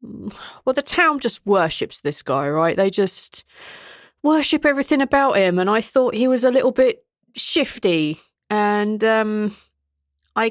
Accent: British